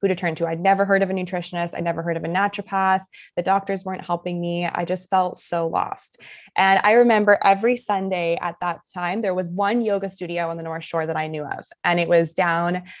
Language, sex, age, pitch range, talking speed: English, female, 20-39, 180-215 Hz, 235 wpm